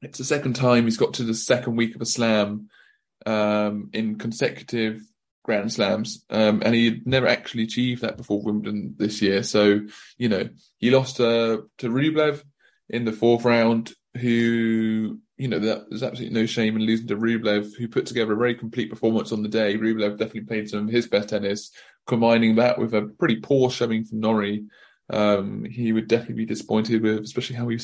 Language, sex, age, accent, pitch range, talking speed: English, male, 20-39, British, 105-120 Hz, 195 wpm